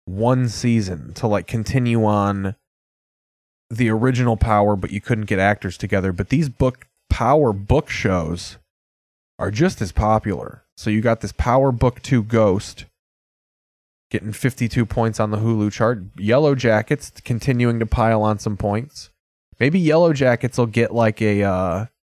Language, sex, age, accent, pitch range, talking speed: English, male, 20-39, American, 95-115 Hz, 150 wpm